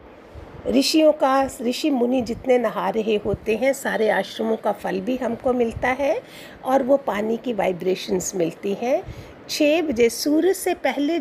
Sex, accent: female, native